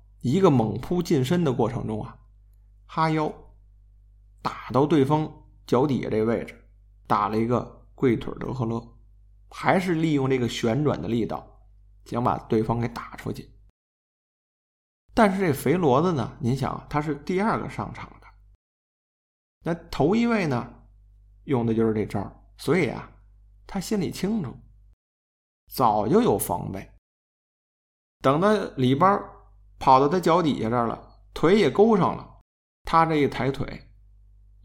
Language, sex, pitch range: Chinese, male, 100-150 Hz